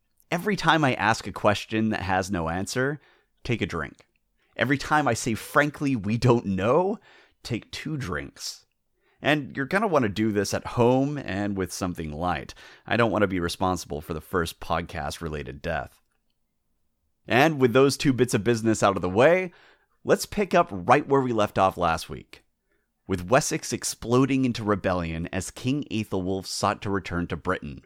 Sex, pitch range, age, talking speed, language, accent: male, 85-135 Hz, 30-49, 180 wpm, English, American